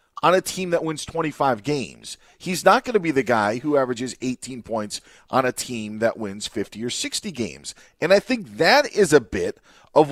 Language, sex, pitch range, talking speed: English, male, 125-175 Hz, 210 wpm